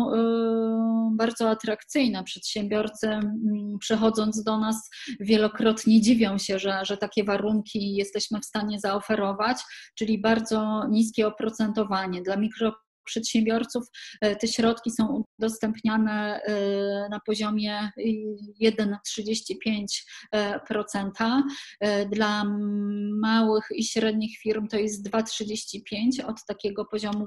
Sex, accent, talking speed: female, native, 90 wpm